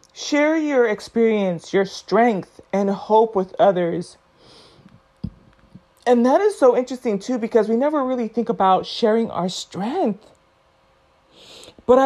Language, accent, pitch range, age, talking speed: English, American, 195-235 Hz, 30-49, 125 wpm